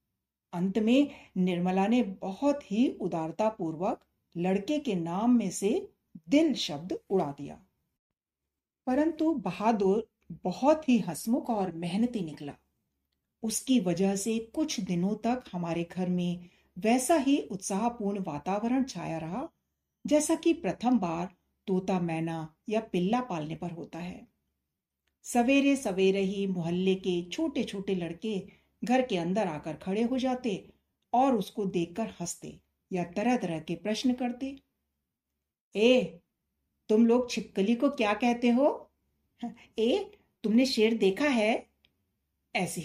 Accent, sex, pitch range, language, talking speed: native, female, 180-245 Hz, Hindi, 125 wpm